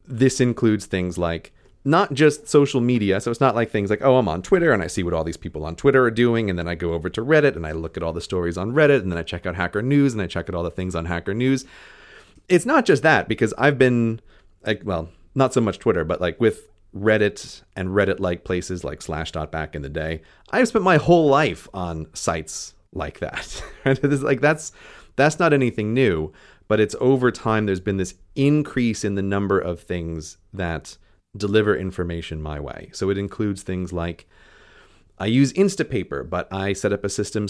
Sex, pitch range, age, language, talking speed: male, 90-120 Hz, 30-49, English, 215 wpm